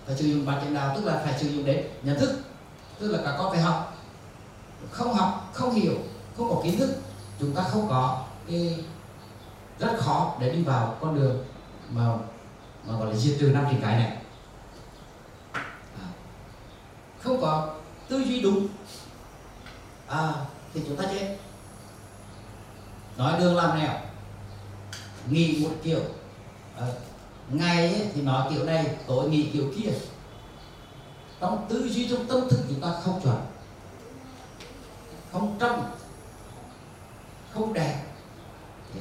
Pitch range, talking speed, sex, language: 115-170 Hz, 135 wpm, male, Vietnamese